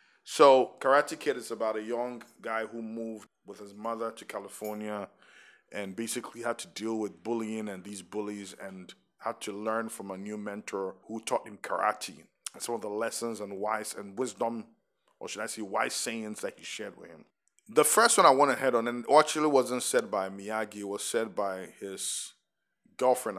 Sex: male